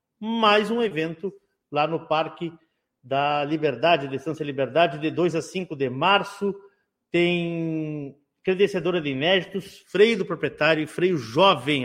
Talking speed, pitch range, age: 135 wpm, 150-200 Hz, 50-69